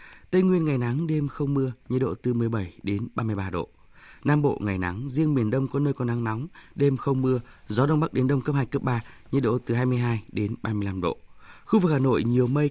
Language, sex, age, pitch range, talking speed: Vietnamese, male, 20-39, 110-140 Hz, 240 wpm